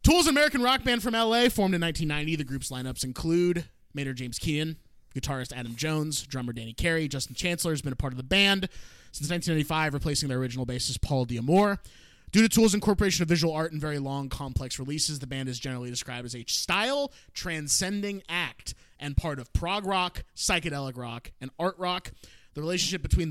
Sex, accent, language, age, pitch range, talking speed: male, American, English, 20-39, 130-175 Hz, 190 wpm